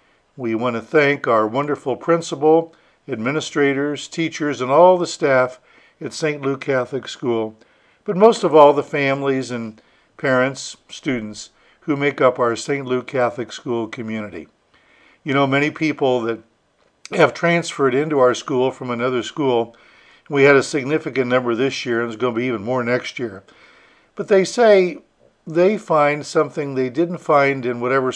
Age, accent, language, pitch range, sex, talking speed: 60-79, American, English, 120-150 Hz, male, 160 wpm